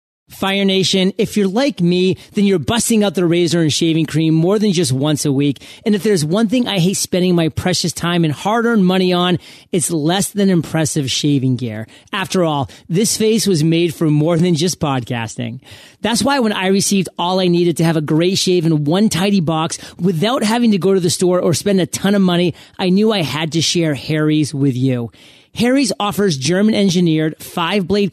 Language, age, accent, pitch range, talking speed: English, 30-49, American, 160-205 Hz, 205 wpm